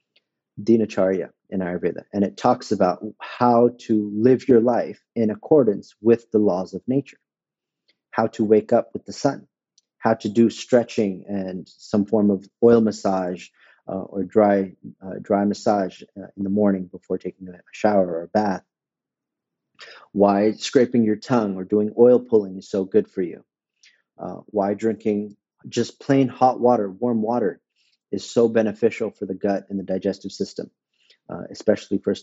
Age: 40-59